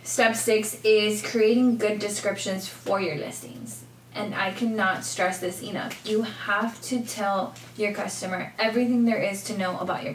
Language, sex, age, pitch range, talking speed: English, female, 20-39, 185-220 Hz, 165 wpm